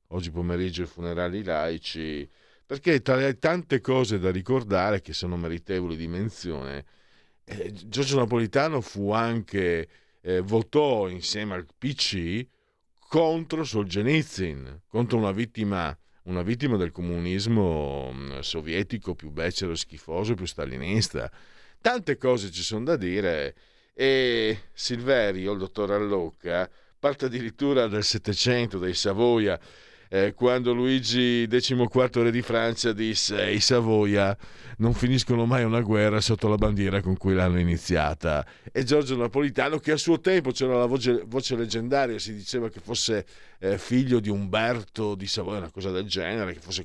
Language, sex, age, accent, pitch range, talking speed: Italian, male, 50-69, native, 90-120 Hz, 140 wpm